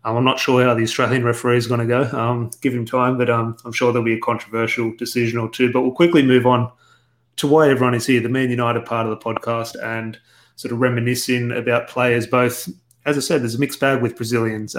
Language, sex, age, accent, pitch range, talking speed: English, male, 30-49, Australian, 120-135 Hz, 240 wpm